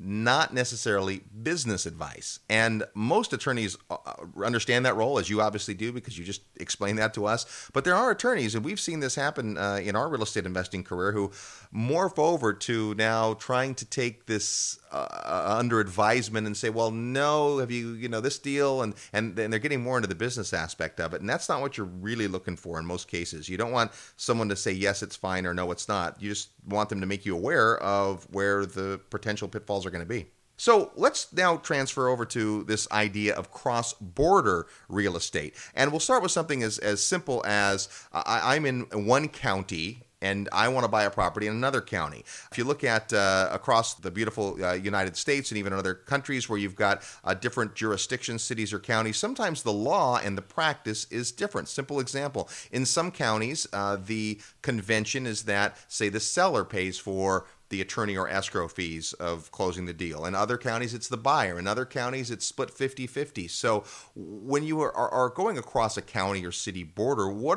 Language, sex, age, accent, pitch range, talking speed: English, male, 30-49, American, 100-125 Hz, 205 wpm